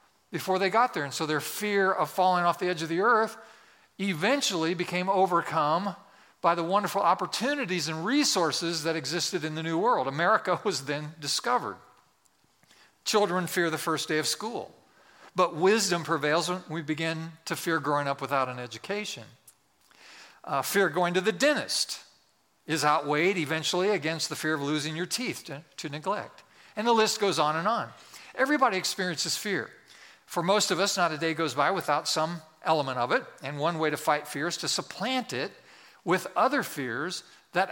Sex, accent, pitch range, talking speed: male, American, 155-190 Hz, 180 wpm